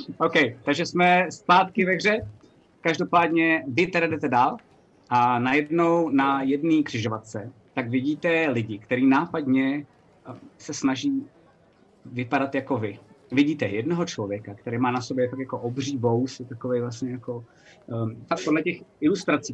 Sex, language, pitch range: male, Czech, 125-150 Hz